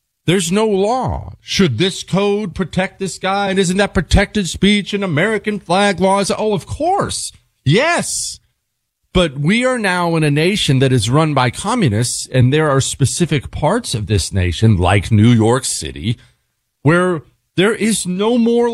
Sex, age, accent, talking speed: male, 40-59, American, 165 wpm